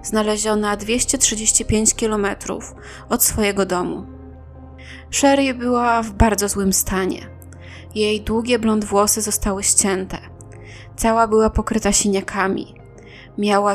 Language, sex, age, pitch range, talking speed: Polish, female, 20-39, 200-235 Hz, 100 wpm